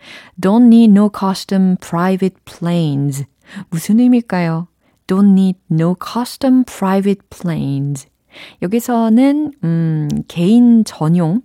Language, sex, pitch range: Korean, female, 155-225 Hz